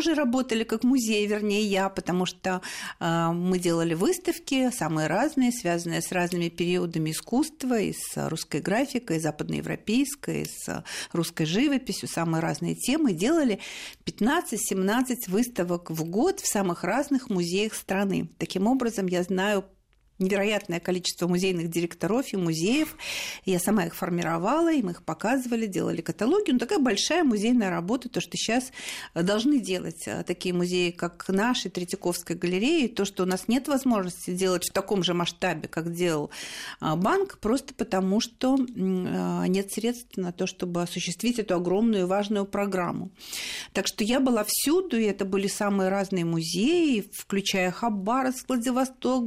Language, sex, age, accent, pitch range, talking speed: Russian, female, 50-69, native, 180-245 Hz, 145 wpm